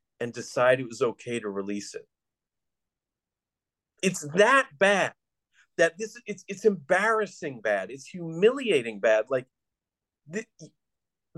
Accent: American